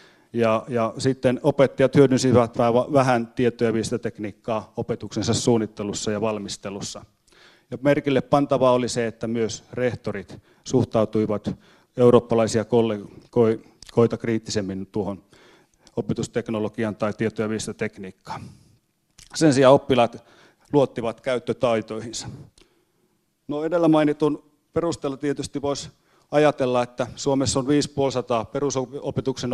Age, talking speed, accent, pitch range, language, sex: 30-49, 95 wpm, native, 110-130 Hz, Finnish, male